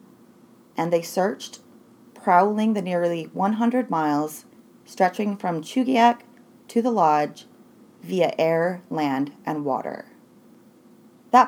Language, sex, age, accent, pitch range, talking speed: English, female, 30-49, American, 170-240 Hz, 105 wpm